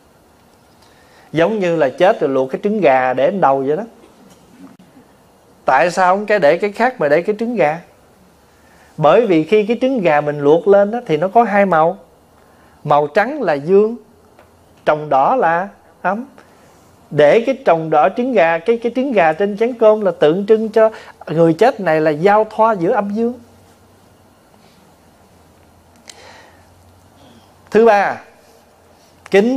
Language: Vietnamese